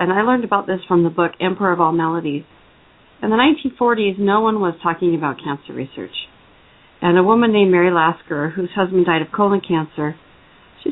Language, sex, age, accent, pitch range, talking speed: English, female, 40-59, American, 170-205 Hz, 190 wpm